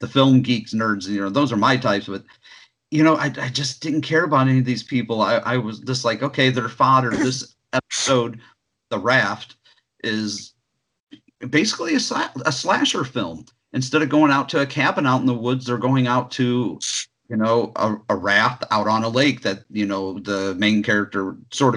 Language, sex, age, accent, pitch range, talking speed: English, male, 50-69, American, 105-130 Hz, 200 wpm